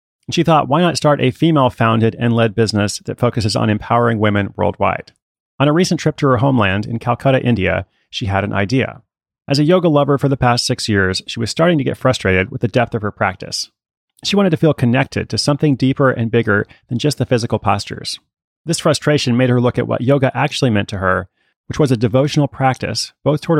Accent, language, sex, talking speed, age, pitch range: American, English, male, 220 wpm, 30-49, 110-140 Hz